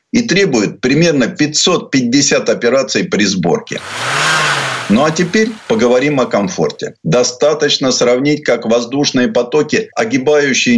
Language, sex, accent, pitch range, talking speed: Russian, male, native, 125-200 Hz, 105 wpm